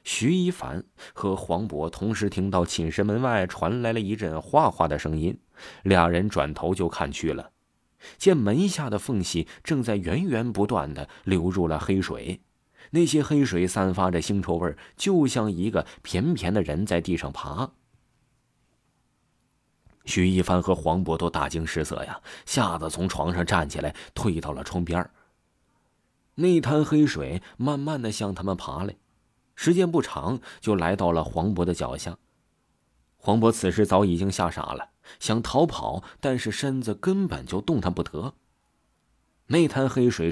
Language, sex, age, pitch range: Chinese, male, 30-49, 85-125 Hz